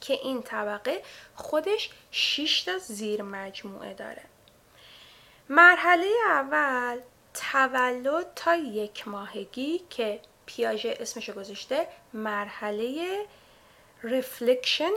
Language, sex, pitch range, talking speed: Persian, female, 225-325 Hz, 80 wpm